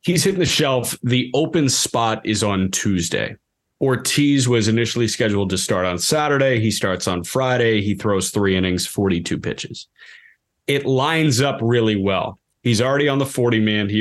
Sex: male